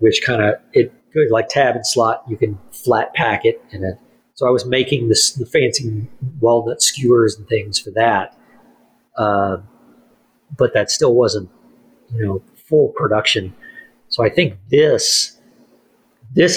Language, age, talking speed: English, 40-59, 155 wpm